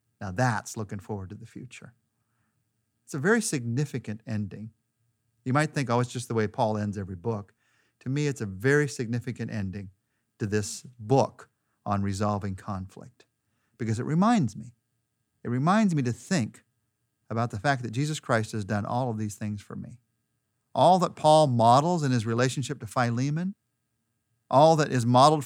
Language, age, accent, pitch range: English, 50-69, American, 110-135 Hz